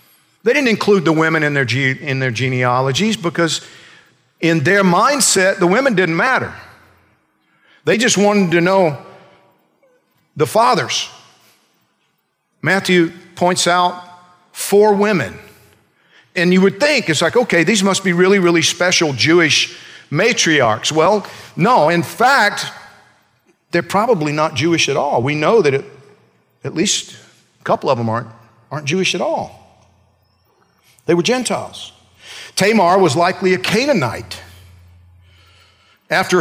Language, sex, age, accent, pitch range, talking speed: English, male, 50-69, American, 135-195 Hz, 130 wpm